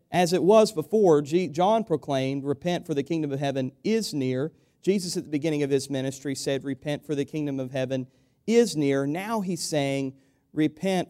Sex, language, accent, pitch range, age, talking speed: male, English, American, 140-185 Hz, 40-59, 185 wpm